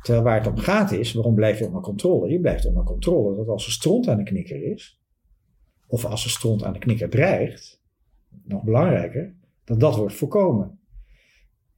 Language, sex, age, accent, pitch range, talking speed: Dutch, male, 50-69, Dutch, 110-140 Hz, 190 wpm